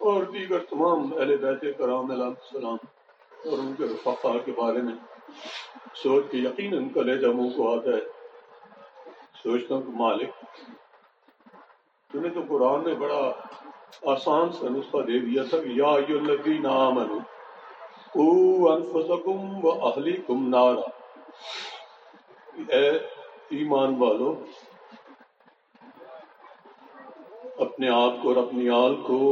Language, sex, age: Urdu, male, 60-79